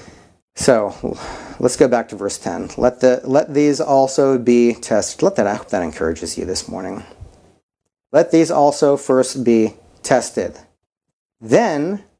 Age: 30-49